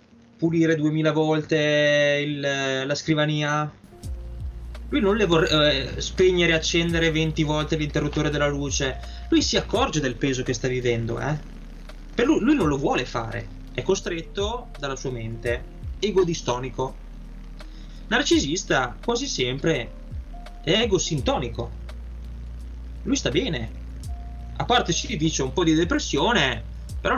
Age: 20-39